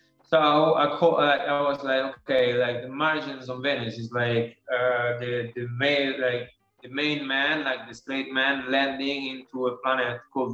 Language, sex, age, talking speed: English, male, 20-39, 175 wpm